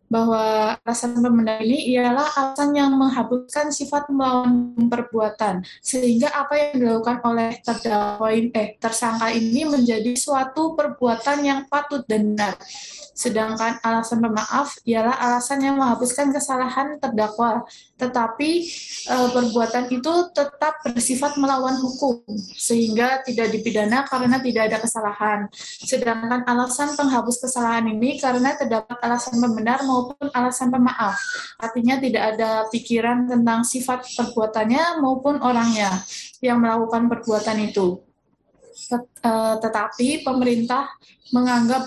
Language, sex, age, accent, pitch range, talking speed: Indonesian, female, 20-39, native, 225-265 Hz, 110 wpm